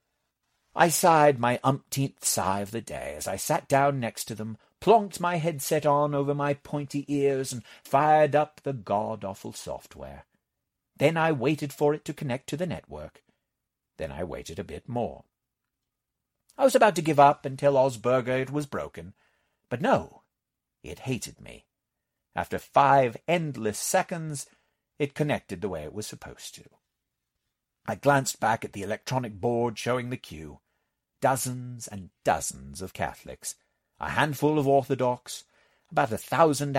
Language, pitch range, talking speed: English, 120-155 Hz, 155 wpm